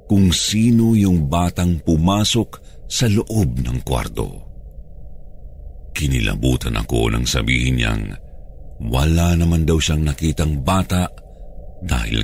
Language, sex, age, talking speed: Filipino, male, 50-69, 105 wpm